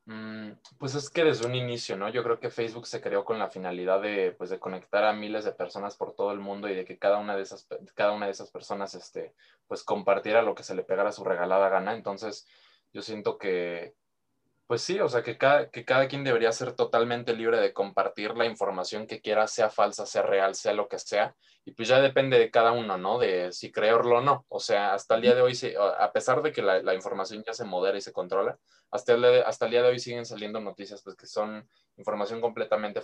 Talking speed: 235 wpm